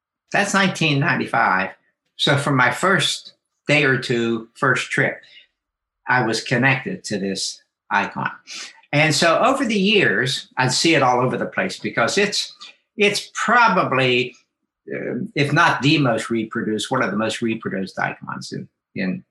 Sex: male